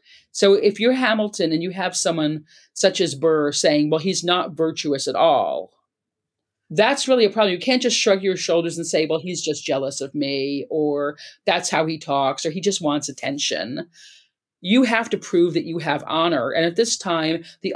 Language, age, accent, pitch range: English, 40-59, American, 150-190 Hz